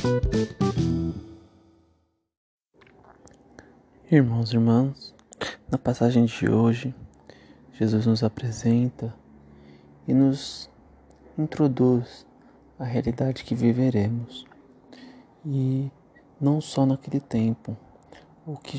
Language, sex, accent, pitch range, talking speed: Portuguese, male, Brazilian, 115-130 Hz, 75 wpm